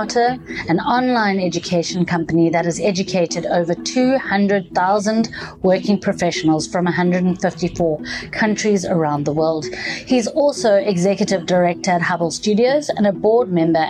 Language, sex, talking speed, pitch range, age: English, female, 120 wpm, 165-215 Hz, 30-49